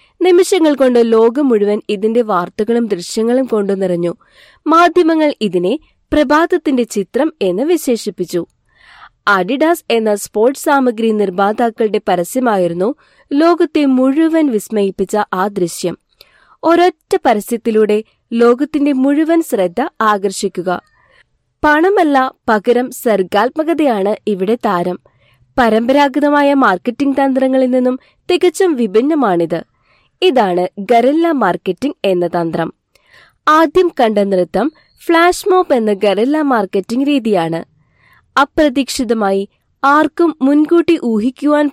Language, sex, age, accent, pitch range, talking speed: Malayalam, female, 20-39, native, 205-295 Hz, 90 wpm